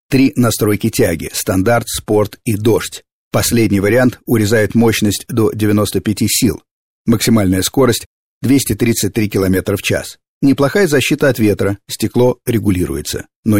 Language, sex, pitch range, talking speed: Russian, male, 100-125 Hz, 130 wpm